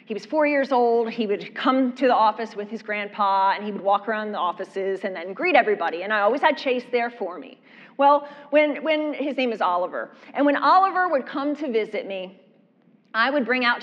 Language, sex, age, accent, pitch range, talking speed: English, female, 30-49, American, 215-290 Hz, 225 wpm